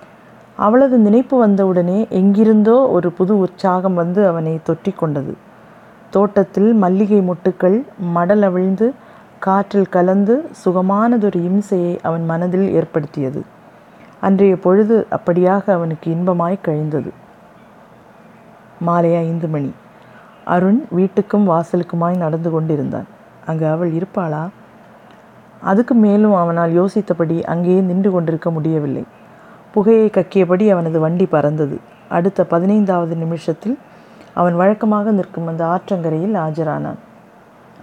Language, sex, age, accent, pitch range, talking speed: Tamil, female, 30-49, native, 165-205 Hz, 95 wpm